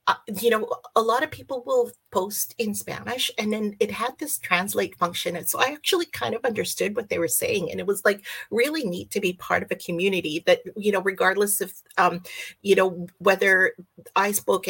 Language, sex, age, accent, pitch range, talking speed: English, female, 40-59, American, 180-230 Hz, 210 wpm